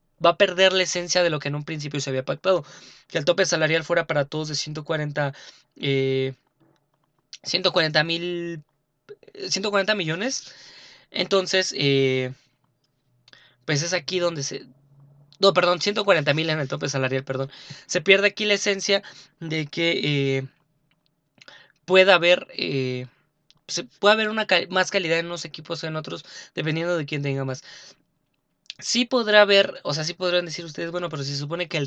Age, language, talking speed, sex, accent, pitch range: 20-39, Spanish, 165 wpm, male, Mexican, 140-180 Hz